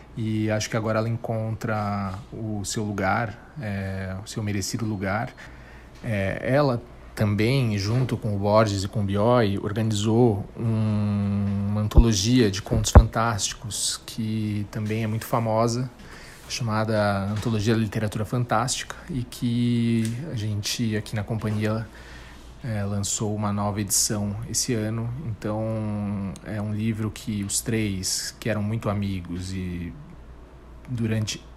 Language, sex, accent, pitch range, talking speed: Portuguese, male, Brazilian, 105-115 Hz, 125 wpm